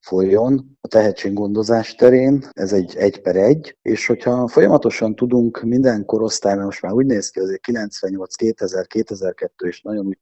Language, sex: Hungarian, male